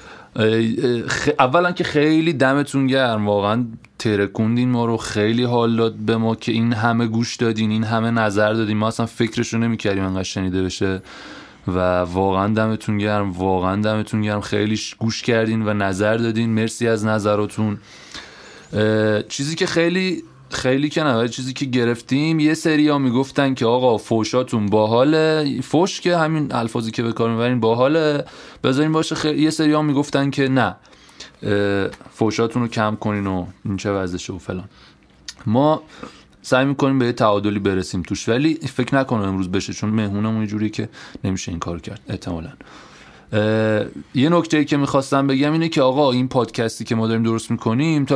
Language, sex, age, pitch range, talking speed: Persian, male, 20-39, 105-135 Hz, 165 wpm